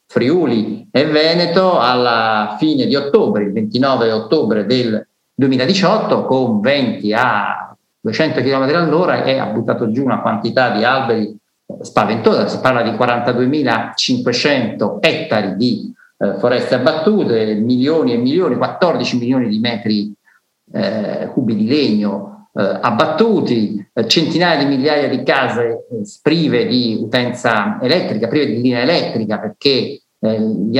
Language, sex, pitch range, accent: Italian, male, 115-160 Hz, native